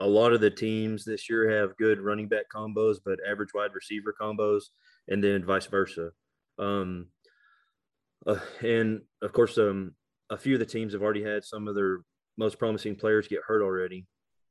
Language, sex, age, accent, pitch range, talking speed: English, male, 30-49, American, 100-115 Hz, 180 wpm